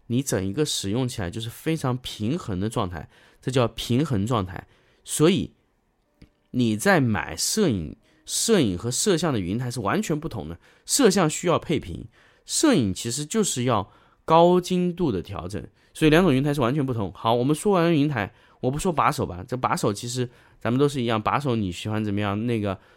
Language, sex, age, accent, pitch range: Chinese, male, 20-39, native, 110-155 Hz